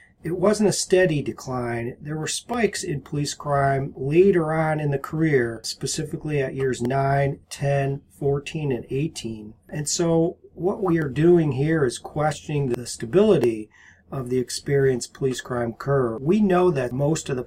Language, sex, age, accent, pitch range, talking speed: English, male, 40-59, American, 125-150 Hz, 160 wpm